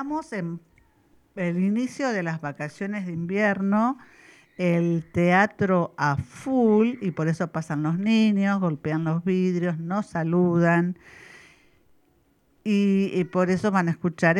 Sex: female